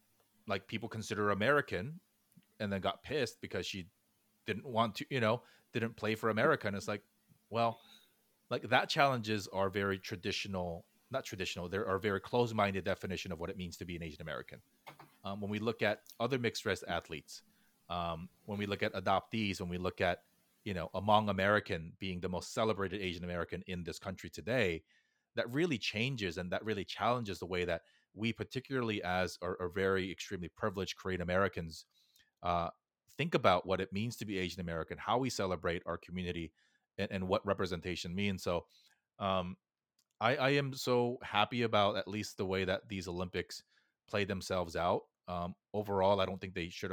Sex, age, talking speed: male, 30-49, 185 wpm